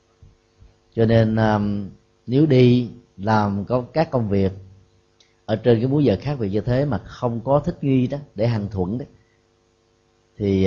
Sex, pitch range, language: male, 95-115 Hz, Vietnamese